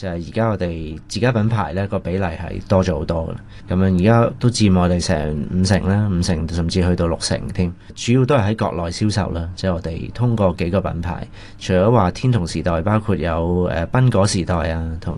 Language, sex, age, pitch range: Chinese, male, 30-49, 90-105 Hz